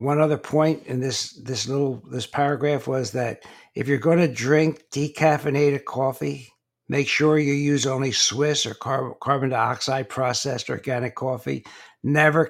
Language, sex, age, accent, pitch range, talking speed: English, male, 60-79, American, 130-160 Hz, 150 wpm